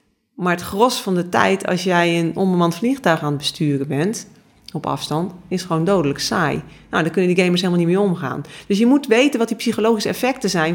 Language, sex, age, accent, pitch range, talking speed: Dutch, female, 40-59, Dutch, 155-195 Hz, 220 wpm